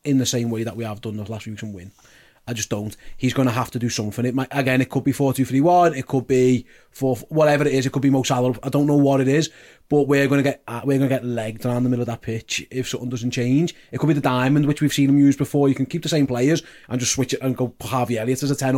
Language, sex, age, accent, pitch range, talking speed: English, male, 30-49, British, 125-145 Hz, 320 wpm